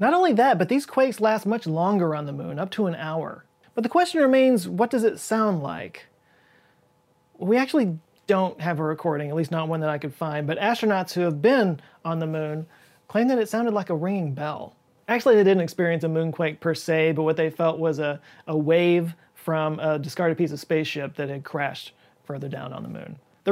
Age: 30-49